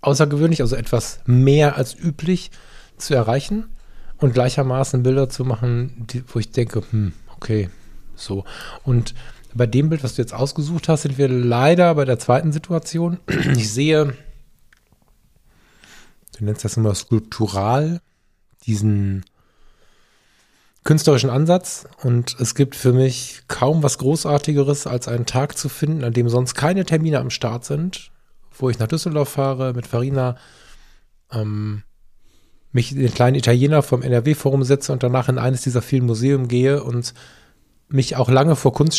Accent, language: German, German